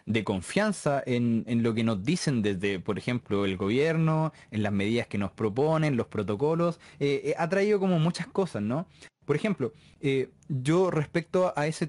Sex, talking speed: male, 180 wpm